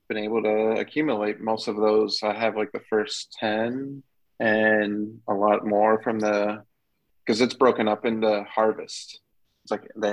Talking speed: 165 wpm